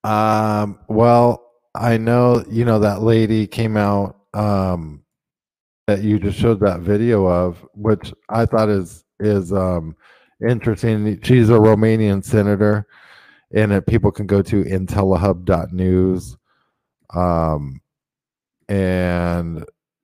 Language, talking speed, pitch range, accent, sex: English, 115 wpm, 95-110 Hz, American, male